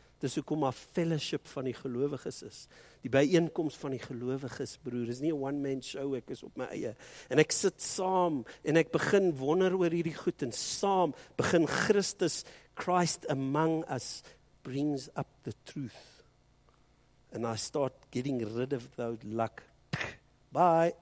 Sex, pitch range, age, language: male, 120-155 Hz, 60-79, English